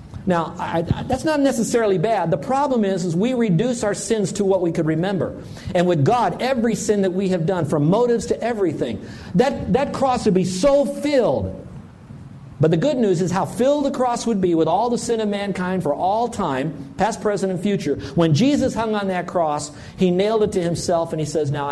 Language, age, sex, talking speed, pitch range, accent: English, 50-69, male, 215 wpm, 170-230 Hz, American